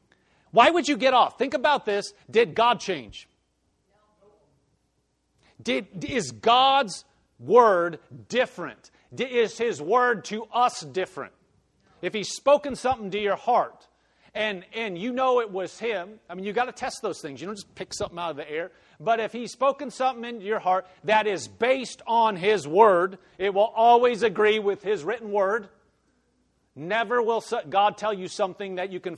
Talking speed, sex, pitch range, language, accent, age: 175 wpm, male, 180-240 Hz, English, American, 40-59